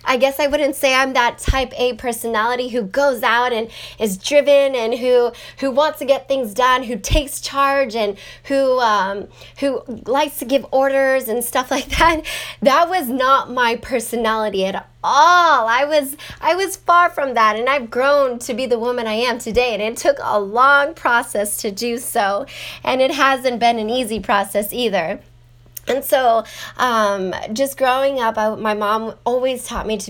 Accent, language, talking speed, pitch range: American, English, 185 wpm, 215-270 Hz